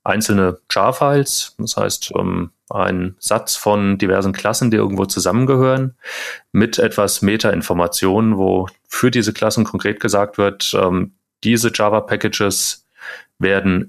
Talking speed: 110 wpm